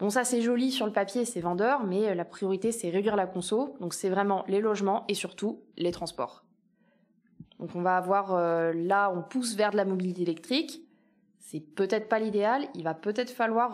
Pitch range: 190-240 Hz